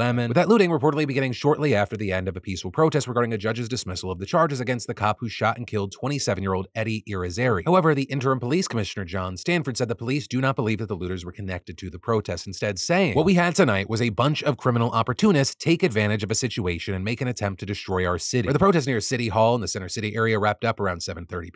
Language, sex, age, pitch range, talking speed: English, male, 30-49, 100-130 Hz, 250 wpm